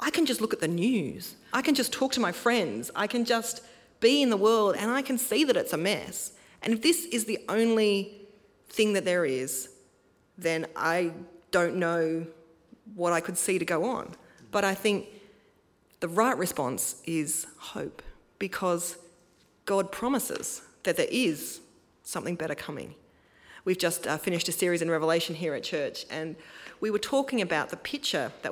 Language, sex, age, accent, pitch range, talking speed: English, female, 30-49, Australian, 165-210 Hz, 180 wpm